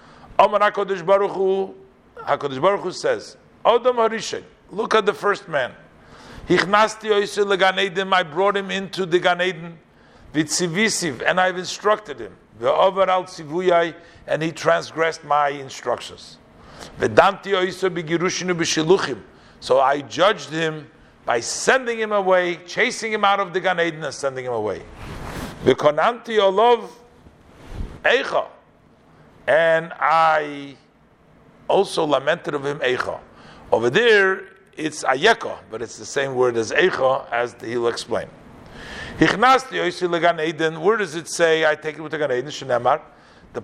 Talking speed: 130 wpm